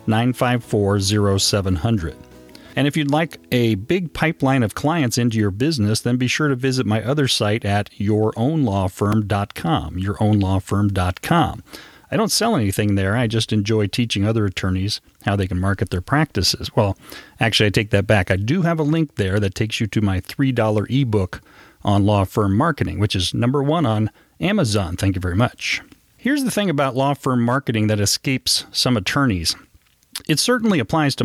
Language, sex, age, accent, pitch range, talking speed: English, male, 40-59, American, 100-135 Hz, 170 wpm